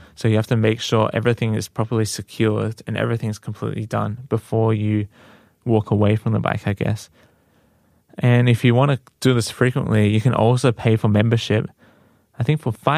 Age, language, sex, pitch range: 20-39, Korean, male, 110-125 Hz